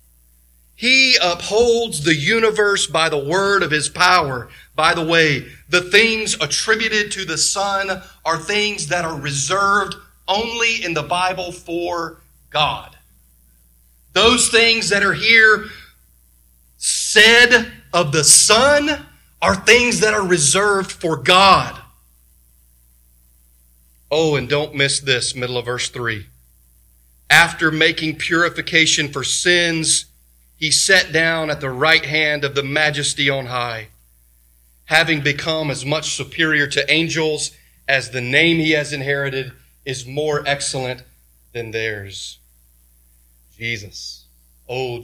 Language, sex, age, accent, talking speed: English, male, 40-59, American, 125 wpm